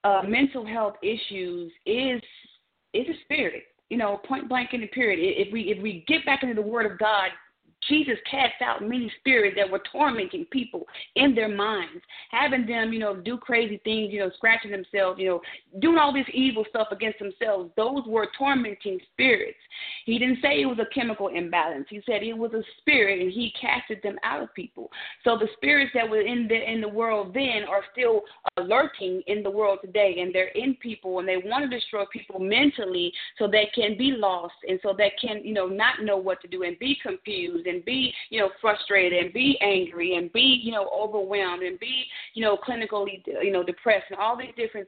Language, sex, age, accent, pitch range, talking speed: English, female, 30-49, American, 195-255 Hz, 210 wpm